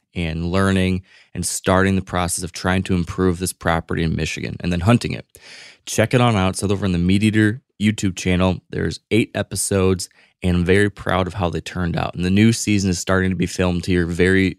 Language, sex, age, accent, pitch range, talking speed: English, male, 20-39, American, 90-100 Hz, 220 wpm